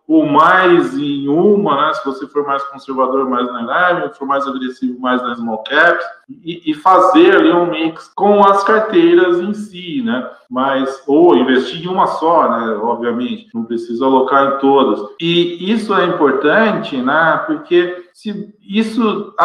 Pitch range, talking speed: 135-210 Hz, 165 wpm